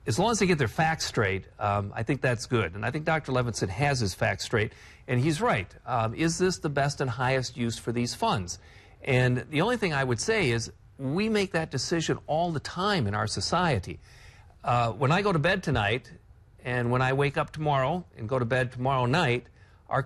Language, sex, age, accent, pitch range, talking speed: English, male, 50-69, American, 105-150 Hz, 220 wpm